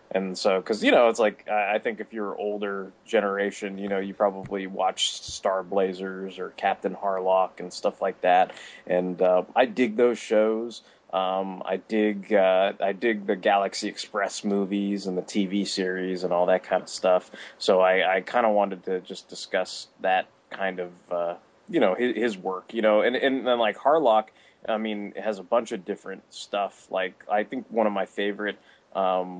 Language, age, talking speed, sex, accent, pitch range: English, 20-39, 190 wpm, male, American, 95-115 Hz